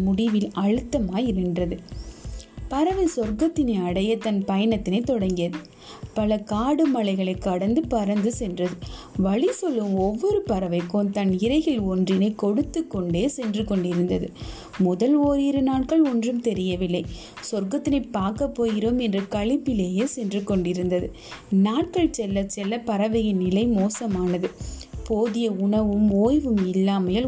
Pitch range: 190-250 Hz